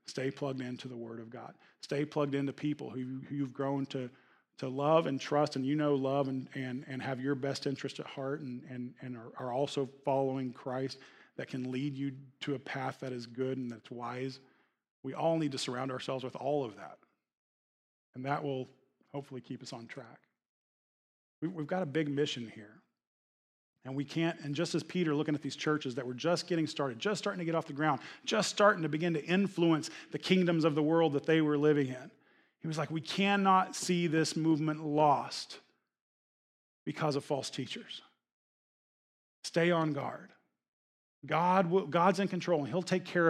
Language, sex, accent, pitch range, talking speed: English, male, American, 130-160 Hz, 195 wpm